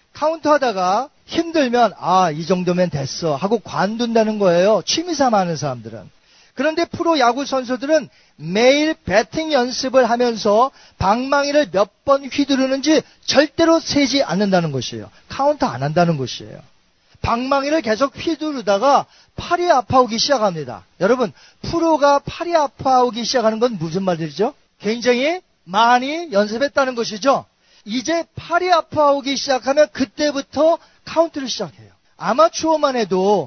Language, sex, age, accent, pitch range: Korean, male, 40-59, native, 195-290 Hz